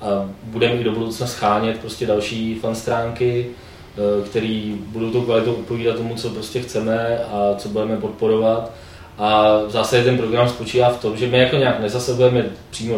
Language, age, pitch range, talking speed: Czech, 20-39, 105-115 Hz, 155 wpm